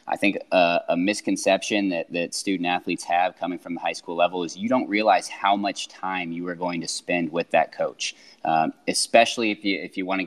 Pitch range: 85-105 Hz